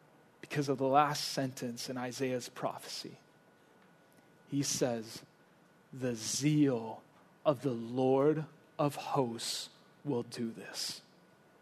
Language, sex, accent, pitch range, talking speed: English, male, American, 145-200 Hz, 105 wpm